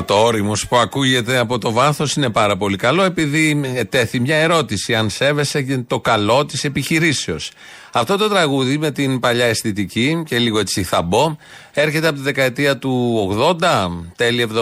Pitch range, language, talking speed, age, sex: 115-150 Hz, Greek, 165 wpm, 40-59, male